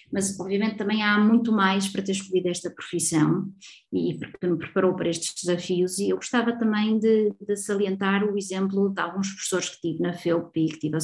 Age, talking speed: 20-39, 205 wpm